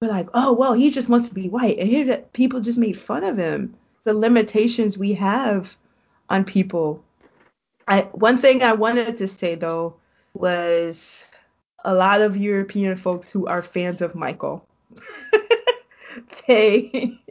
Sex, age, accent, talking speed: female, 20-39, American, 155 wpm